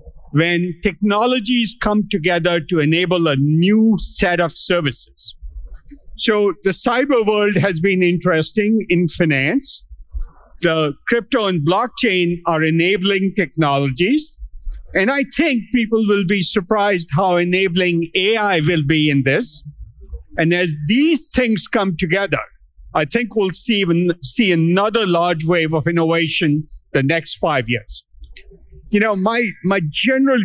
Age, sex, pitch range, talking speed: 50-69, male, 155-205 Hz, 130 wpm